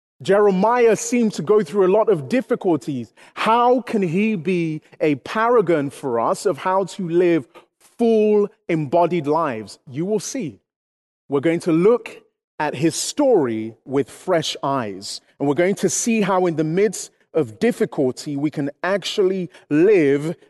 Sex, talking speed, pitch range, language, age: male, 150 wpm, 140-205 Hz, English, 30-49